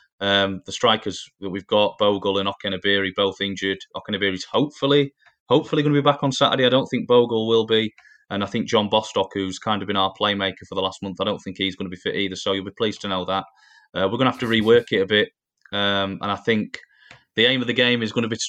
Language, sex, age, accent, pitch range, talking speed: English, male, 20-39, British, 95-120 Hz, 265 wpm